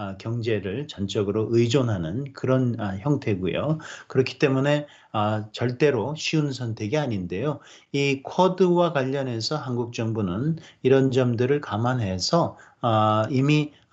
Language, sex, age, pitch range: Korean, male, 40-59, 115-155 Hz